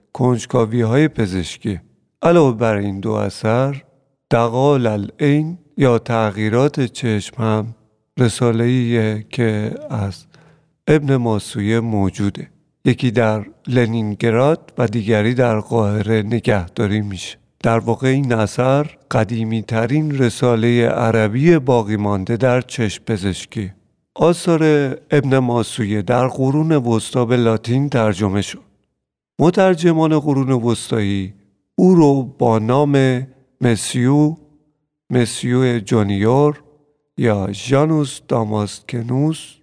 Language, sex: Persian, male